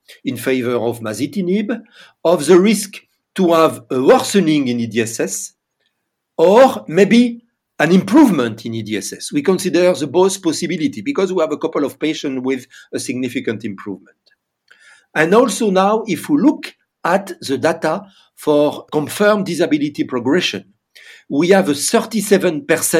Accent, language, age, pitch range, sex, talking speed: French, English, 50-69, 135-210 Hz, male, 135 wpm